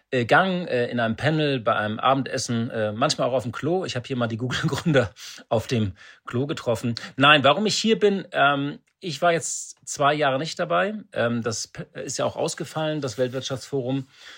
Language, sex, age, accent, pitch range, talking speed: German, male, 40-59, German, 125-160 Hz, 170 wpm